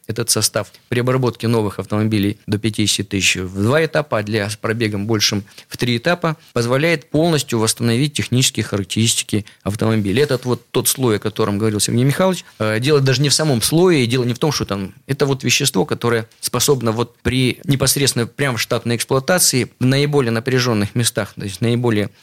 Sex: male